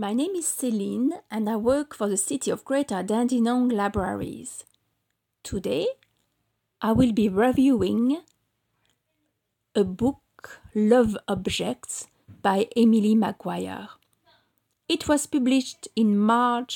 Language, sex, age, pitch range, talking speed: English, female, 40-59, 205-260 Hz, 110 wpm